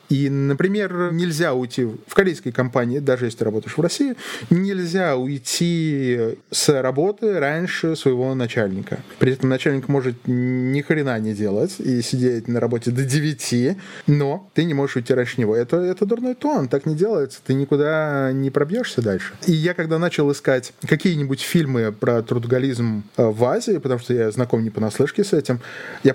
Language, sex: Russian, male